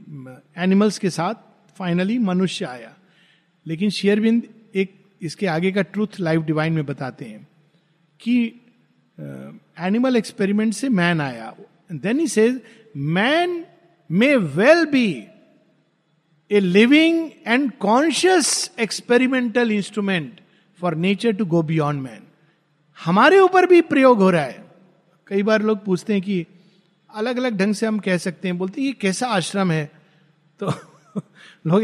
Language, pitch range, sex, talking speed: Hindi, 165-225 Hz, male, 130 wpm